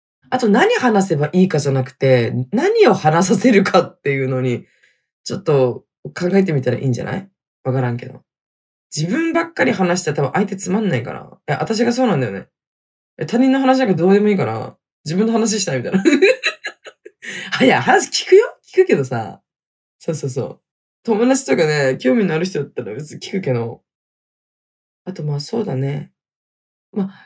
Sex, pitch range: female, 130-205 Hz